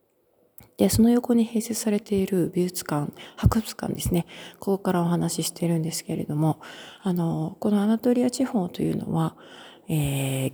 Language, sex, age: Japanese, female, 40-59